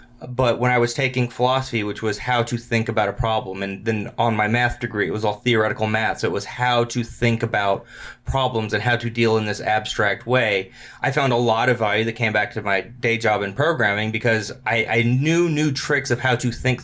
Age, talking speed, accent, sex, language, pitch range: 20-39, 235 wpm, American, male, English, 110-130 Hz